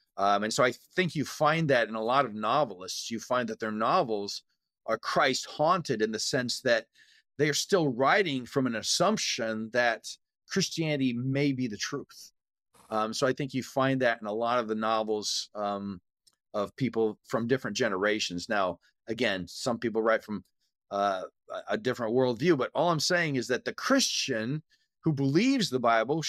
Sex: male